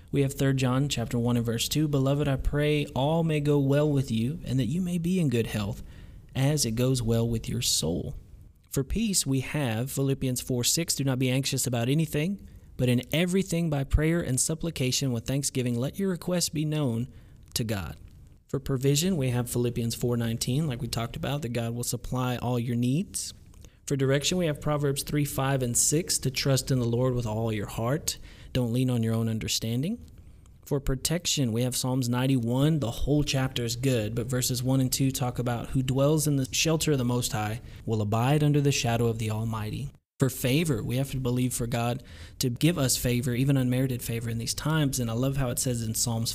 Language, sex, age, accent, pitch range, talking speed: English, male, 30-49, American, 120-140 Hz, 215 wpm